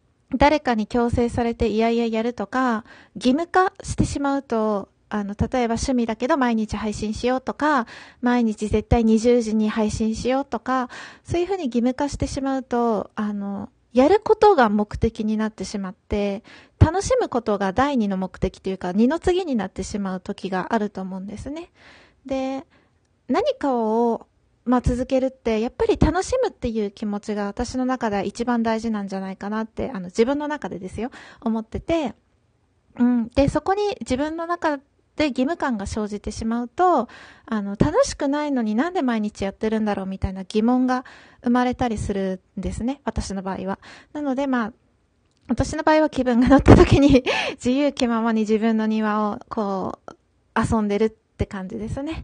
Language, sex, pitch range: Japanese, female, 215-270 Hz